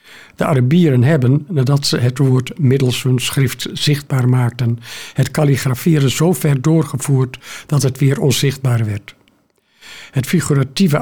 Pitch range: 130-150 Hz